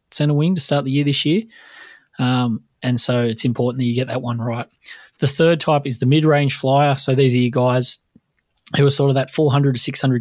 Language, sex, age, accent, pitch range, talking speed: English, male, 20-39, Australian, 120-140 Hz, 215 wpm